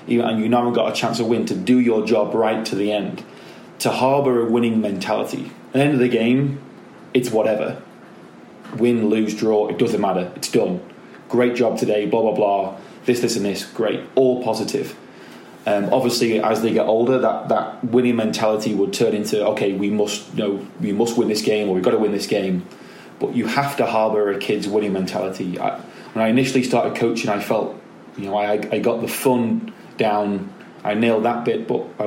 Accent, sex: British, male